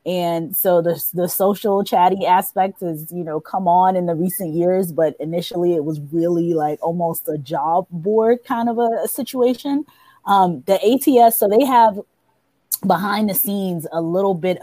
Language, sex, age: English, female, 20-39